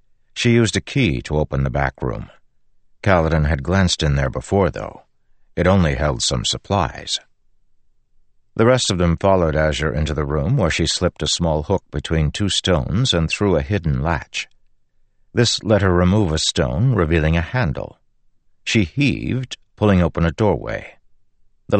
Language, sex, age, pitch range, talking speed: English, male, 60-79, 75-100 Hz, 165 wpm